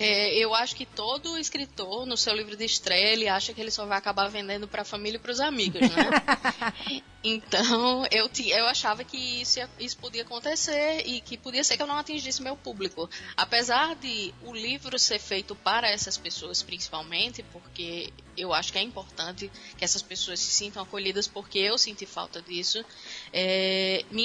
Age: 10-29